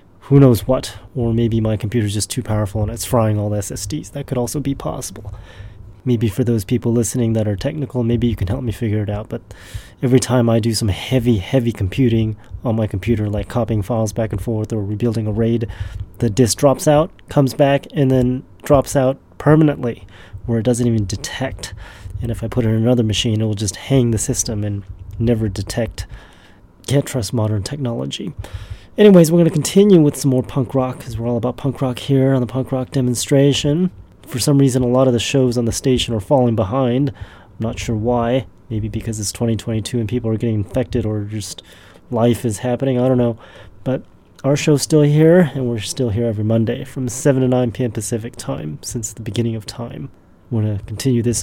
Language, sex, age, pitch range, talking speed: English, male, 30-49, 105-130 Hz, 210 wpm